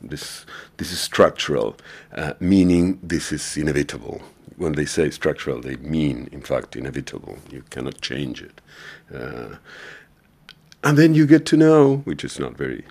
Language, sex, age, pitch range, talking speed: Finnish, male, 50-69, 70-100 Hz, 155 wpm